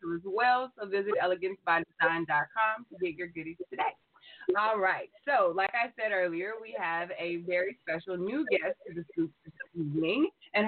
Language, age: English, 20-39